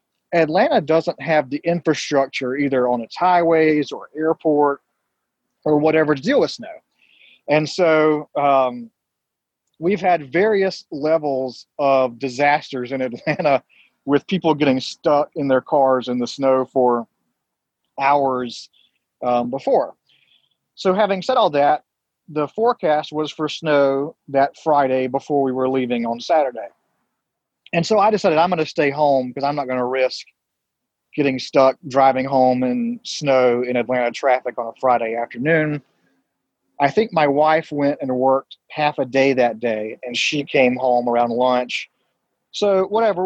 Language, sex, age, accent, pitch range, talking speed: English, male, 40-59, American, 130-160 Hz, 150 wpm